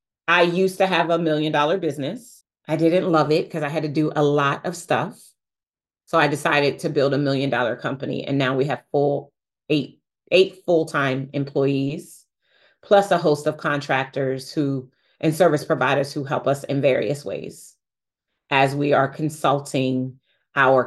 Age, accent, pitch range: 30-49, American, 145-200 Hz